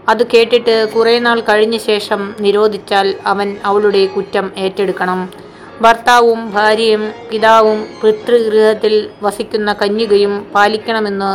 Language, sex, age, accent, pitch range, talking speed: Malayalam, female, 20-39, native, 200-230 Hz, 95 wpm